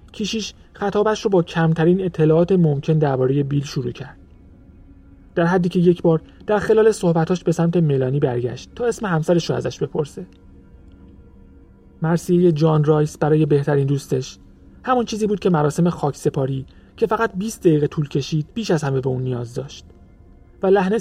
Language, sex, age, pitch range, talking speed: Persian, male, 30-49, 115-170 Hz, 165 wpm